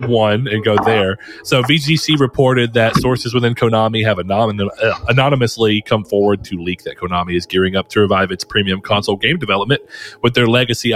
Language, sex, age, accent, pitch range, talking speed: English, male, 30-49, American, 95-115 Hz, 180 wpm